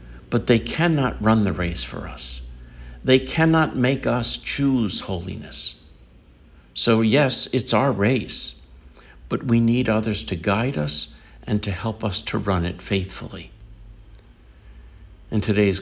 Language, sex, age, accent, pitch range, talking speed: English, male, 60-79, American, 90-115 Hz, 135 wpm